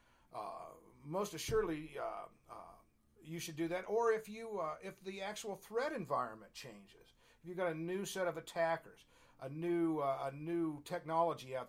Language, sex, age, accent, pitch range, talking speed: English, male, 50-69, American, 135-180 Hz, 175 wpm